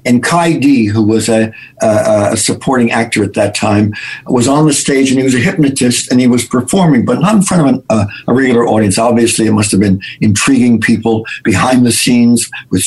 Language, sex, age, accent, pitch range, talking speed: English, male, 60-79, American, 115-140 Hz, 220 wpm